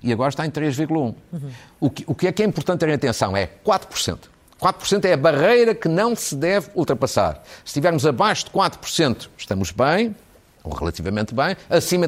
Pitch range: 125-175 Hz